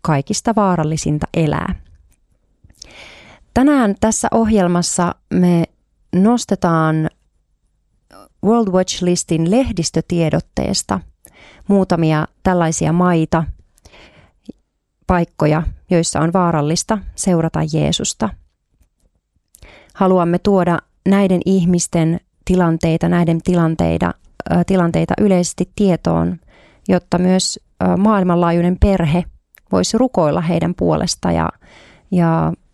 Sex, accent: female, native